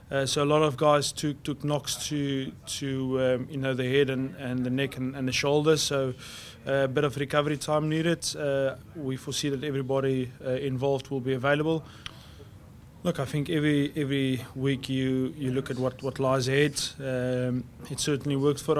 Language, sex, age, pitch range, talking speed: English, male, 20-39, 130-140 Hz, 190 wpm